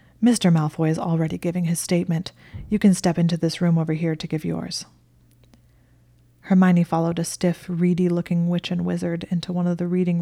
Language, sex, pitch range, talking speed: English, female, 160-180 Hz, 180 wpm